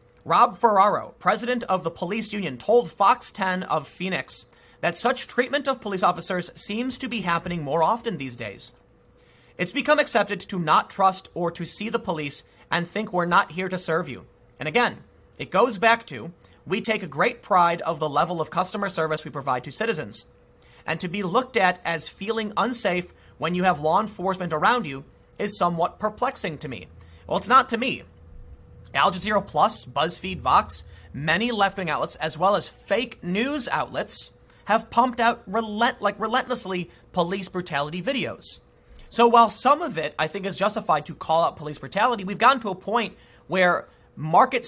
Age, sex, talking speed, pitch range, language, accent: 30-49, male, 180 wpm, 155-225 Hz, English, American